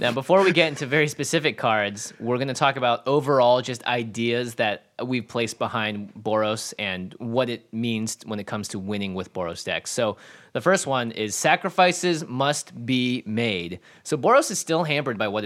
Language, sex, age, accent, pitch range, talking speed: English, male, 20-39, American, 115-140 Hz, 190 wpm